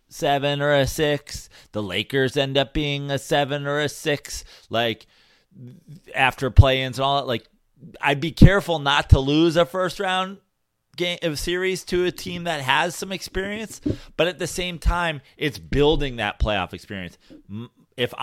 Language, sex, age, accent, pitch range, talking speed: English, male, 30-49, American, 110-150 Hz, 170 wpm